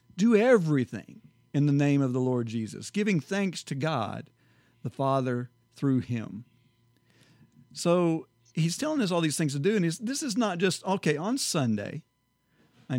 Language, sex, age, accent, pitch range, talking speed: English, male, 50-69, American, 135-180 Hz, 160 wpm